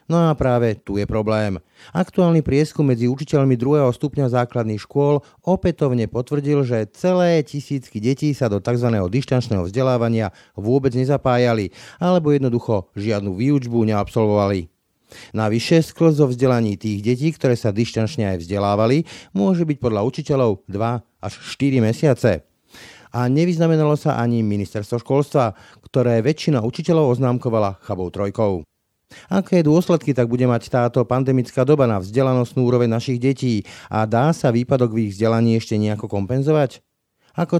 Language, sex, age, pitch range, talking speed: Slovak, male, 40-59, 110-145 Hz, 135 wpm